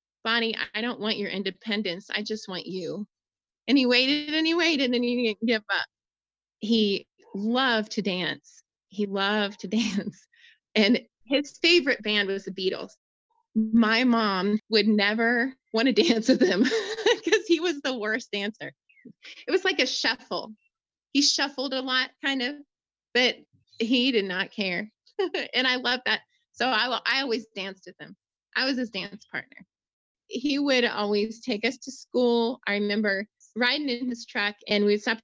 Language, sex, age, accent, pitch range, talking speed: English, female, 20-39, American, 205-255 Hz, 170 wpm